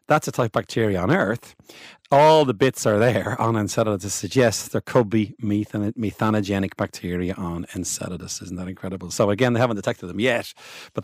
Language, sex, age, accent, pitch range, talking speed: English, male, 40-59, Irish, 95-125 Hz, 185 wpm